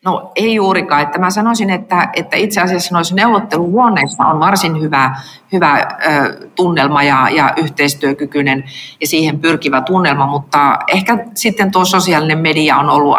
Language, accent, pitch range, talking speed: Finnish, native, 140-170 Hz, 130 wpm